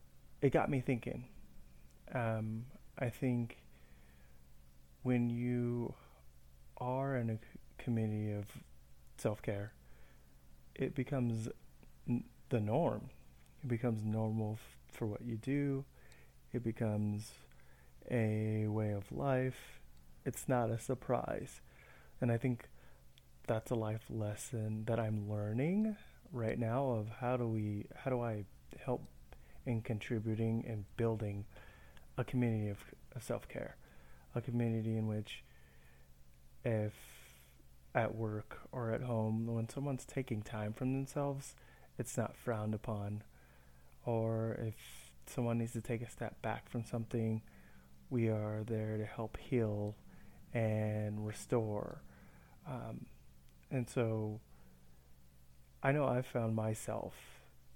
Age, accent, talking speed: 30-49, American, 120 wpm